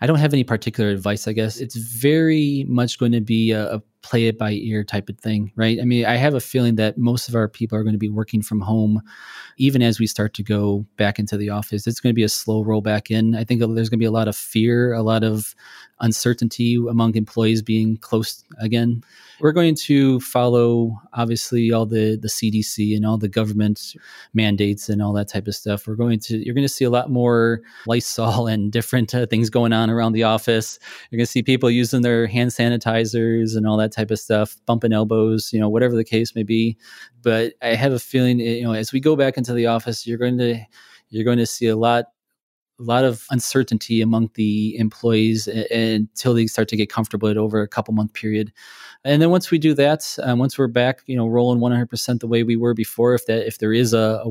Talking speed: 240 wpm